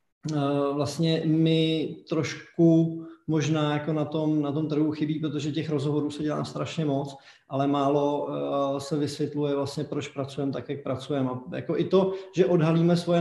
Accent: native